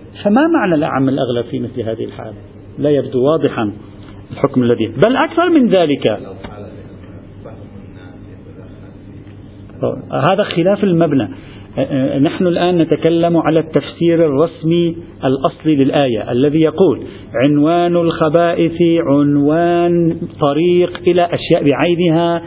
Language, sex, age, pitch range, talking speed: Arabic, male, 50-69, 130-210 Hz, 100 wpm